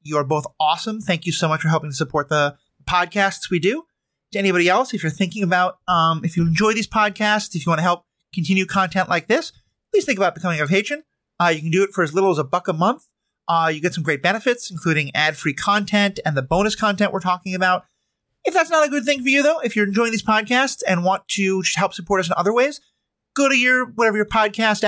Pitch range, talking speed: 160-220 Hz, 250 wpm